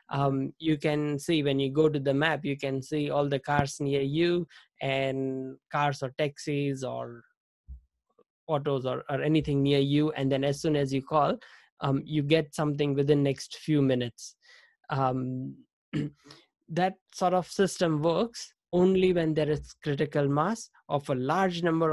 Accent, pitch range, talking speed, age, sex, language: Indian, 140-165 Hz, 165 wpm, 20-39, male, English